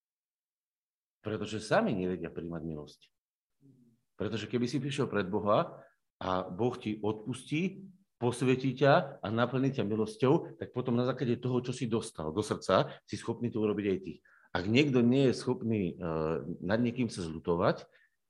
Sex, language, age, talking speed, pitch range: male, Slovak, 50-69, 155 wpm, 105-145 Hz